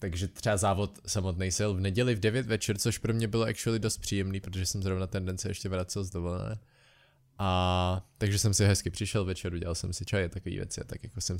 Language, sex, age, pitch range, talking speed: Czech, male, 20-39, 90-115 Hz, 215 wpm